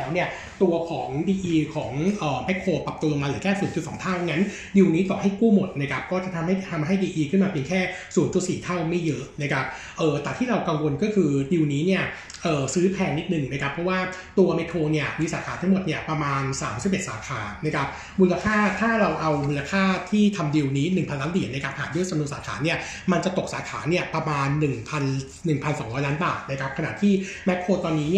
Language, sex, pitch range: Thai, male, 150-185 Hz